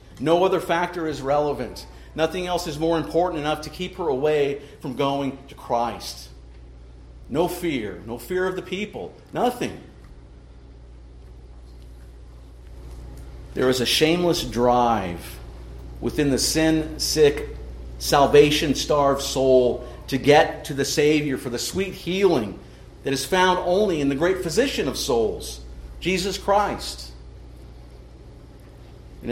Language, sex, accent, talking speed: English, male, American, 120 wpm